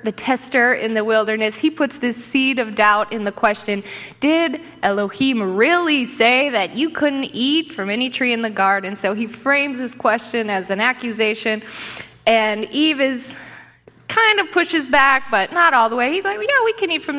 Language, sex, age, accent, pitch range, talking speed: English, female, 20-39, American, 220-295 Hz, 190 wpm